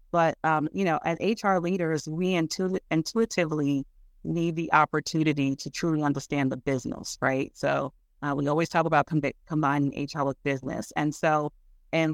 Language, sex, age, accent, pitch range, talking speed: English, female, 30-49, American, 145-165 Hz, 165 wpm